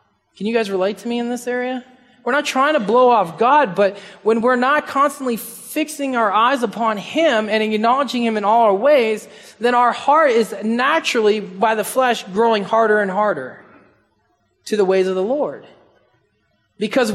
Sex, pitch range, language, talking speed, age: male, 190-245 Hz, English, 180 wpm, 20-39